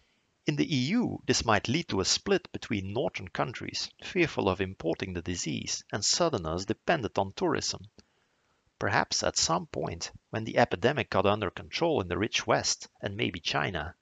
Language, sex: English, male